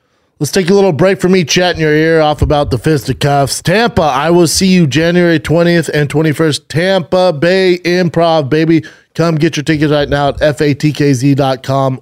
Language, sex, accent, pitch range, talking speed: English, male, American, 130-160 Hz, 175 wpm